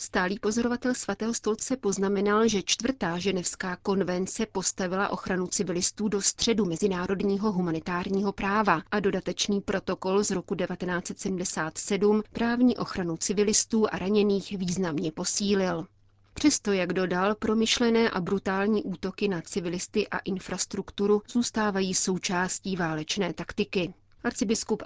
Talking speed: 110 wpm